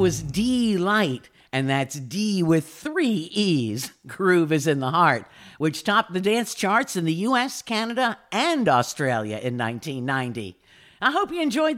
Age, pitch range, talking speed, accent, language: 50-69, 140-195 Hz, 155 wpm, American, English